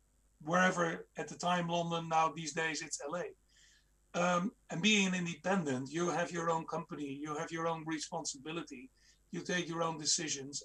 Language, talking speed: Croatian, 170 wpm